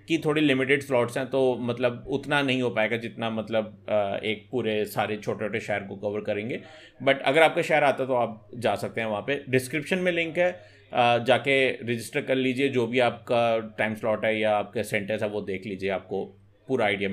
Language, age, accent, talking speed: Hindi, 30-49, native, 205 wpm